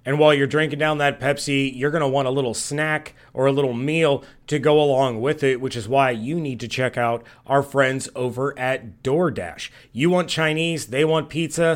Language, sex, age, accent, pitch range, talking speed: English, male, 30-49, American, 135-180 Hz, 215 wpm